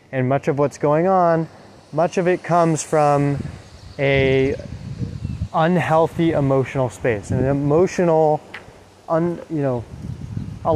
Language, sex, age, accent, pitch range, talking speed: English, male, 20-39, American, 125-165 Hz, 115 wpm